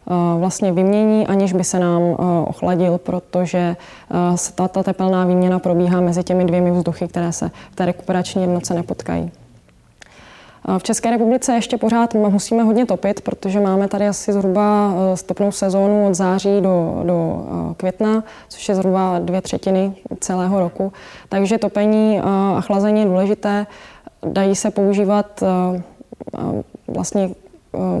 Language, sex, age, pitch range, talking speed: Czech, female, 20-39, 185-200 Hz, 130 wpm